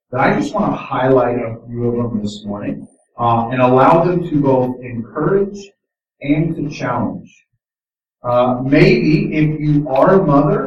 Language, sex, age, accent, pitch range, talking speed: English, male, 40-59, American, 120-150 Hz, 165 wpm